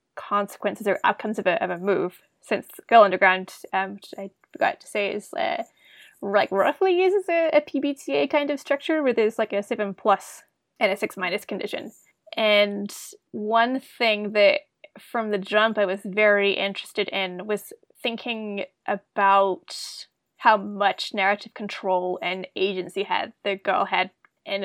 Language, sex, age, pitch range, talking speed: English, female, 20-39, 195-260 Hz, 160 wpm